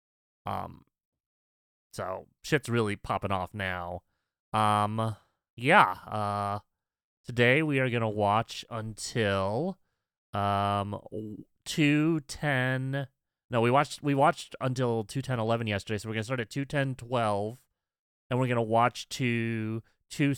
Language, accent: English, American